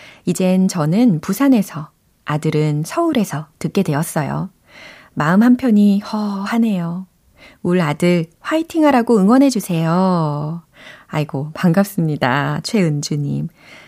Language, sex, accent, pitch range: Korean, female, native, 160-220 Hz